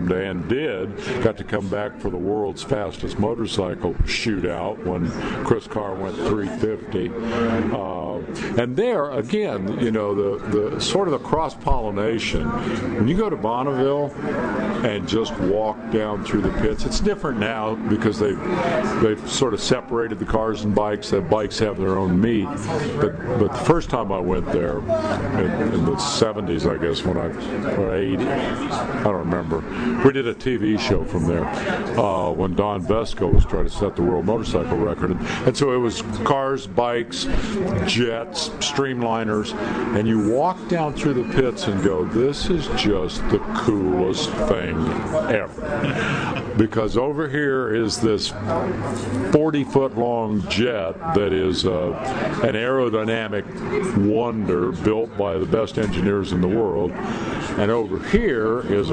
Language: English